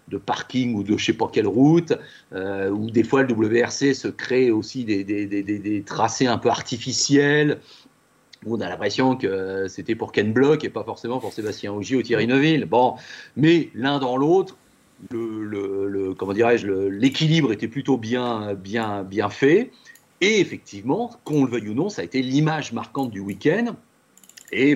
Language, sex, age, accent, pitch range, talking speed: French, male, 40-59, French, 100-140 Hz, 190 wpm